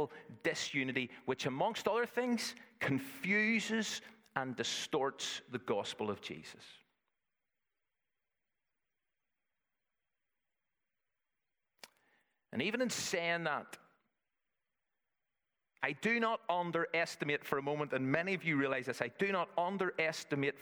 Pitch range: 145-210 Hz